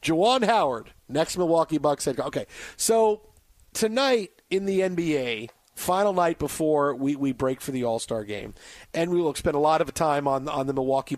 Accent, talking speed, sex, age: American, 195 wpm, male, 40-59